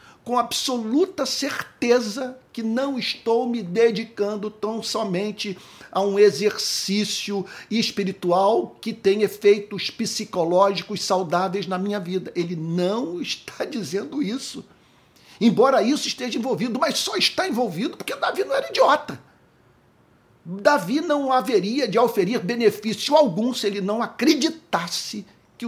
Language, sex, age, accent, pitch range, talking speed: Portuguese, male, 50-69, Brazilian, 165-230 Hz, 120 wpm